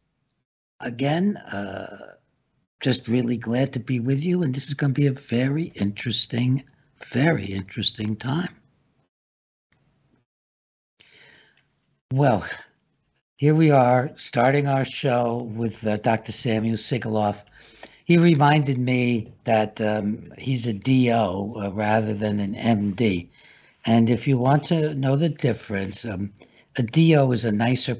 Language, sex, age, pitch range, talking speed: English, male, 60-79, 100-130 Hz, 125 wpm